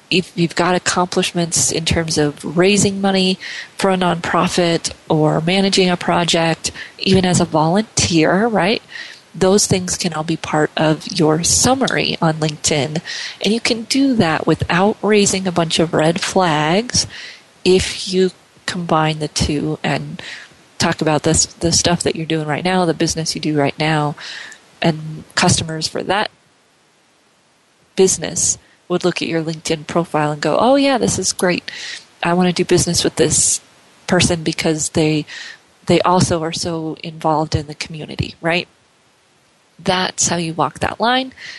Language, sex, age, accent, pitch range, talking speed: English, female, 30-49, American, 160-190 Hz, 155 wpm